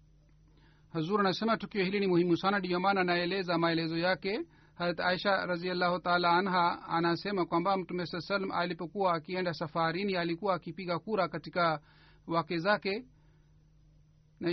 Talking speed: 125 wpm